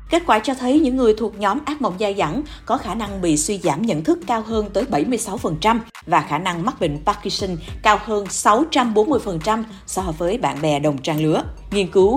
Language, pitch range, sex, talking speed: Vietnamese, 190-260 Hz, female, 205 wpm